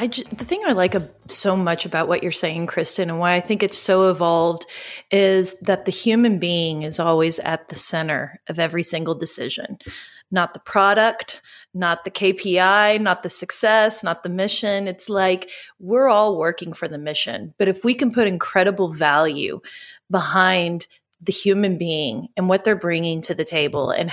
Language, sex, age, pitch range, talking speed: English, female, 30-49, 175-210 Hz, 175 wpm